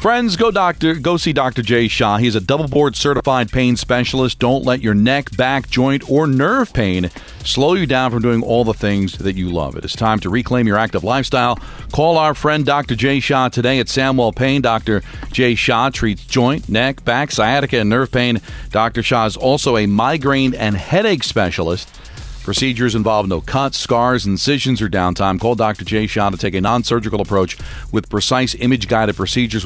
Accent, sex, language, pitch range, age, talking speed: American, male, English, 105-135 Hz, 40-59, 190 wpm